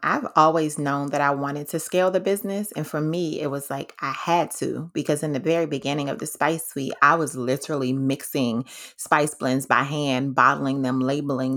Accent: American